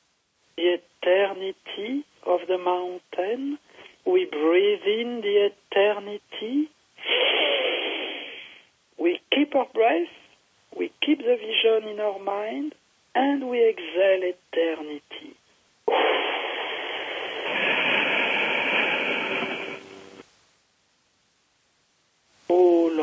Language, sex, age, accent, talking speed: English, male, 60-79, French, 70 wpm